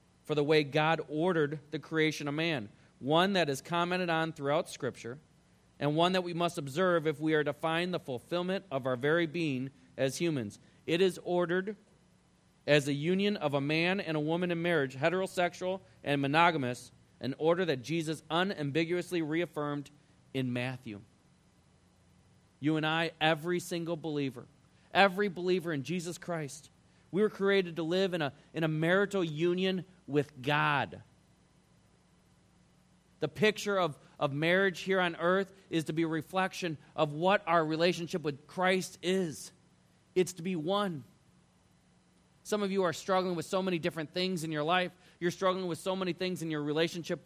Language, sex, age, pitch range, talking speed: English, male, 30-49, 145-180 Hz, 165 wpm